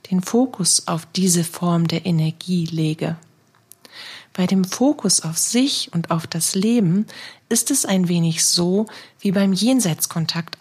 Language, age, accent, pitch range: German, 40-59, German, 170-215 Hz